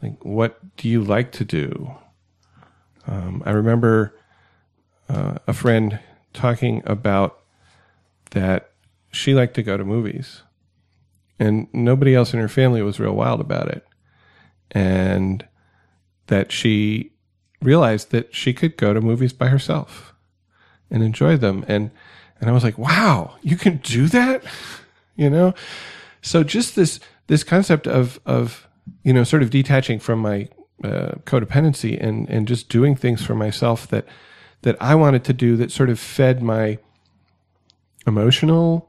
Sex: male